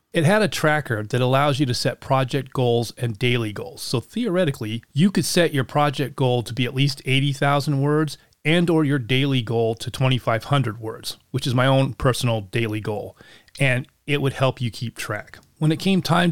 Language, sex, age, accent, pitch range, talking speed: English, male, 30-49, American, 125-150 Hz, 200 wpm